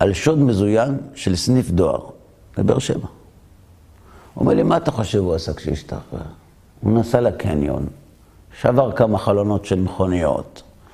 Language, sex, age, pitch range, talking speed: Hebrew, male, 60-79, 95-135 Hz, 135 wpm